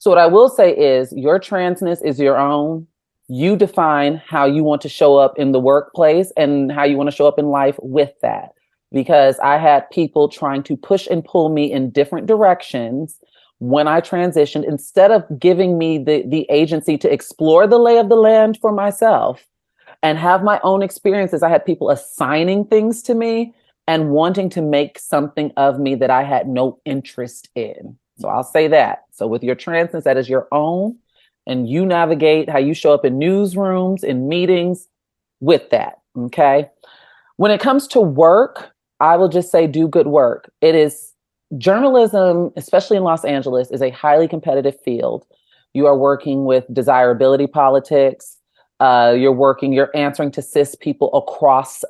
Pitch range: 140-180 Hz